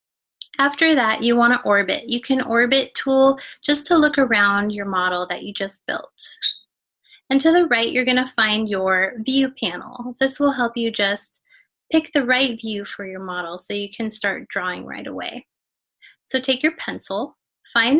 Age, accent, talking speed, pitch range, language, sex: 20-39, American, 185 wpm, 215-285 Hz, English, female